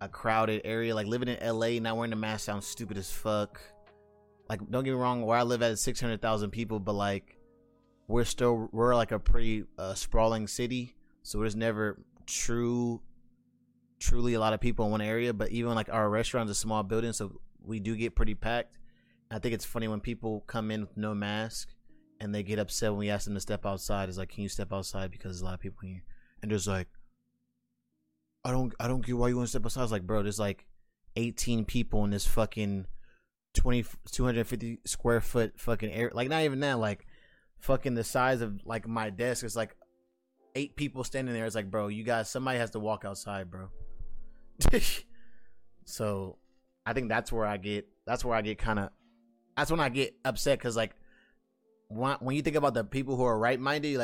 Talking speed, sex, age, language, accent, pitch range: 210 wpm, male, 20-39, English, American, 105-120 Hz